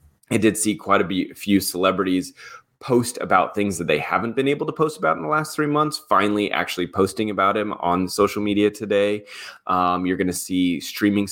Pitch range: 90-110 Hz